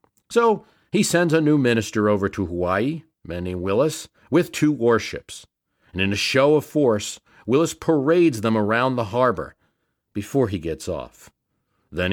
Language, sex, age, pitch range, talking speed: English, male, 50-69, 100-140 Hz, 165 wpm